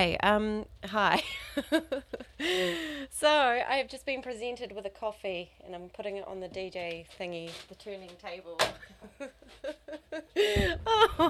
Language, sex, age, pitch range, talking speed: English, female, 30-49, 195-275 Hz, 120 wpm